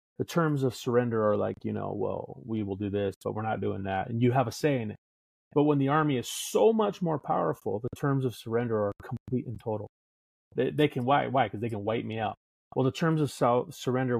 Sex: male